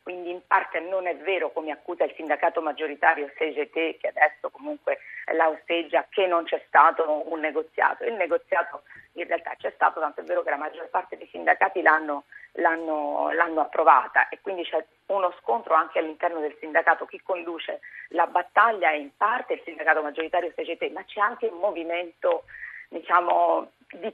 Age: 40-59